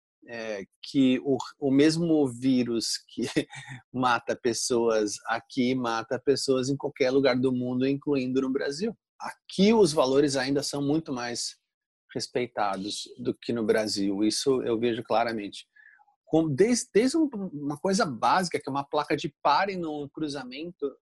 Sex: male